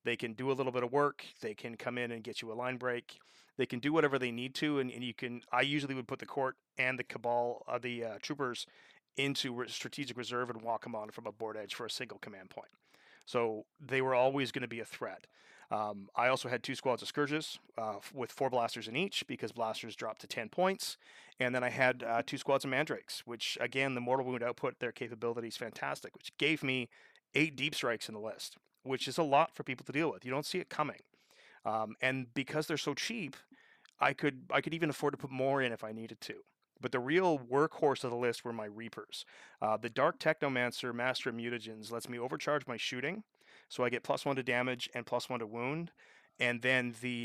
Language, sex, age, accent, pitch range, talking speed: English, male, 30-49, American, 120-140 Hz, 235 wpm